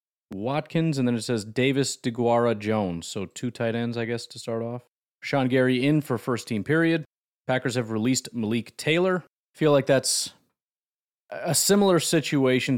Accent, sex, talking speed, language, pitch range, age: American, male, 160 wpm, English, 110-135 Hz, 30-49